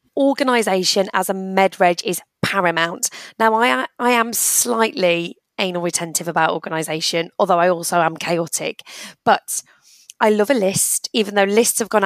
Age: 20-39